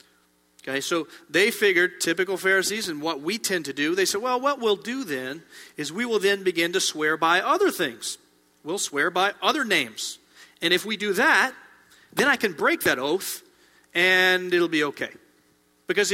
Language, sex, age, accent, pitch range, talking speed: English, male, 40-59, American, 150-205 Hz, 185 wpm